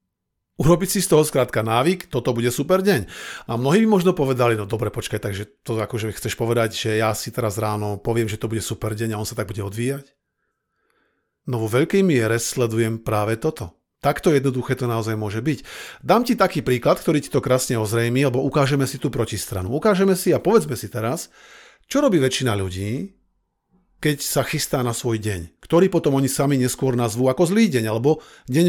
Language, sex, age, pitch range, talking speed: Slovak, male, 40-59, 115-155 Hz, 195 wpm